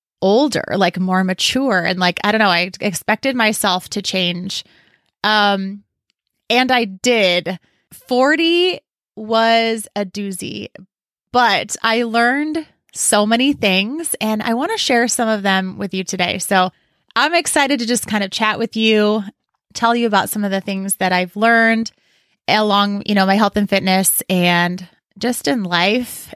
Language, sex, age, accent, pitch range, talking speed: English, female, 20-39, American, 185-235 Hz, 160 wpm